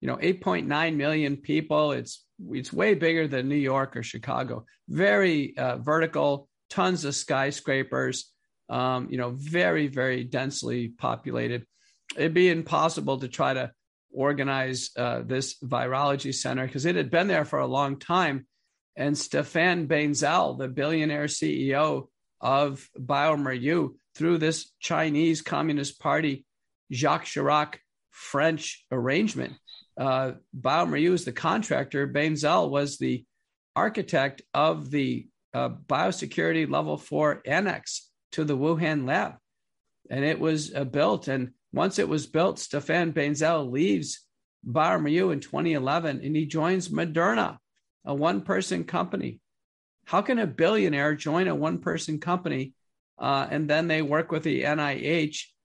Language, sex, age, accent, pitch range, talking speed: English, male, 50-69, American, 135-160 Hz, 135 wpm